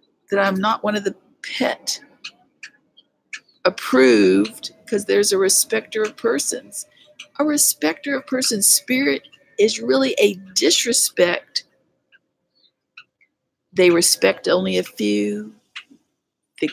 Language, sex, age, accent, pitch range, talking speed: English, female, 50-69, American, 185-295 Hz, 105 wpm